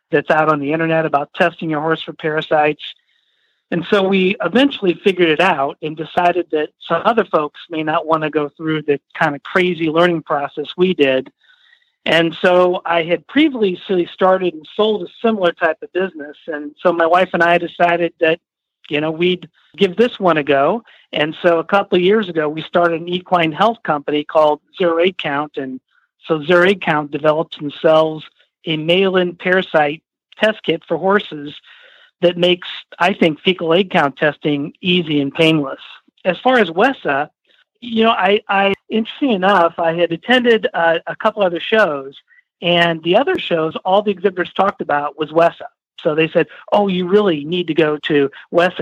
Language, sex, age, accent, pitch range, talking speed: English, male, 50-69, American, 155-195 Hz, 185 wpm